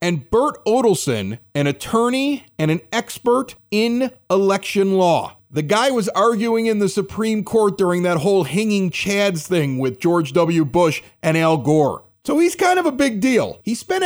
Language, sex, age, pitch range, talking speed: English, male, 30-49, 155-215 Hz, 175 wpm